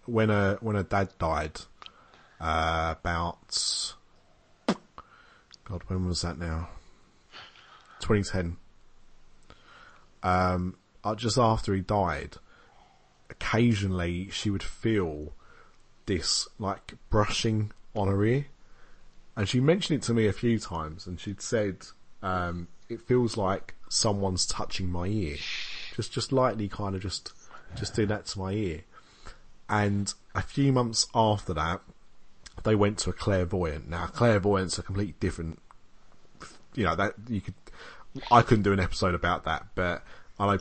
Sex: male